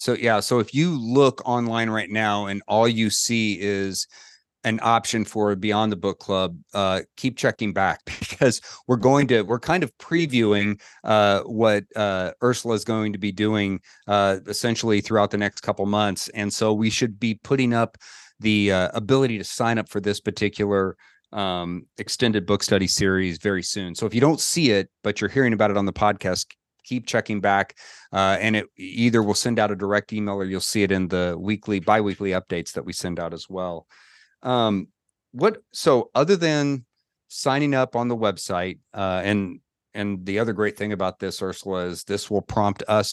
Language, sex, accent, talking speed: English, male, American, 195 wpm